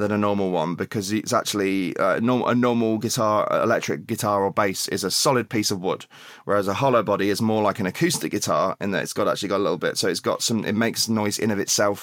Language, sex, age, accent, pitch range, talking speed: English, male, 20-39, British, 105-125 Hz, 255 wpm